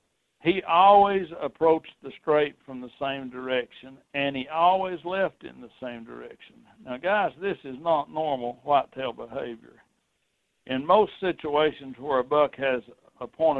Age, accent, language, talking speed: 60-79, American, English, 150 wpm